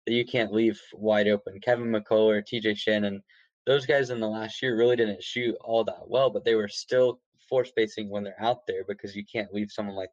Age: 10-29